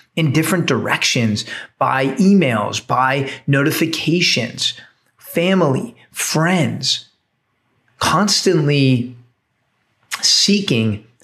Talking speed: 60 wpm